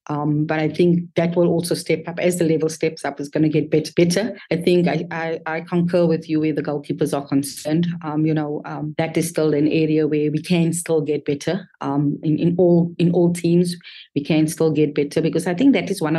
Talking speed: 245 wpm